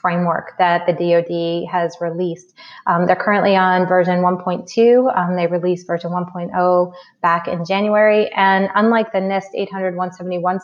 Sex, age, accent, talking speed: female, 20-39, American, 140 wpm